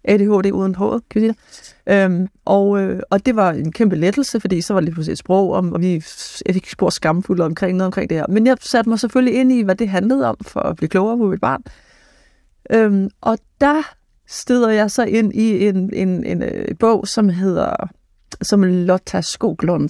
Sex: female